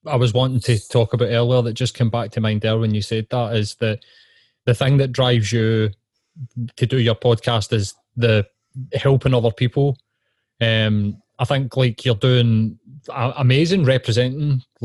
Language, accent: English, British